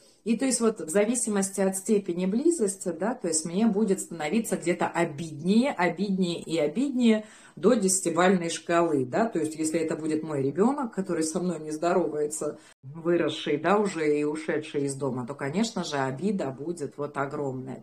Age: 30-49